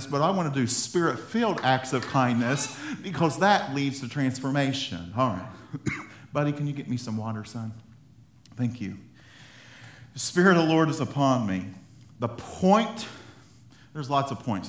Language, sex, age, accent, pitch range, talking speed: English, male, 50-69, American, 115-140 Hz, 170 wpm